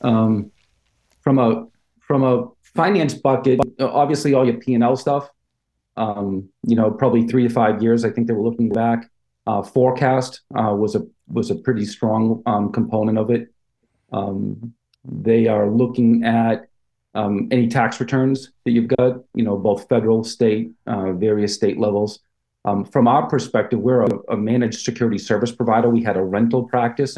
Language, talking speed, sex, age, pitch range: English, 170 wpm, male, 40-59, 105-125 Hz